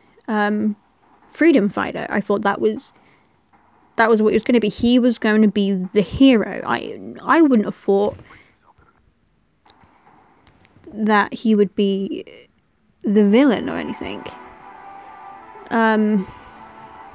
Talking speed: 125 wpm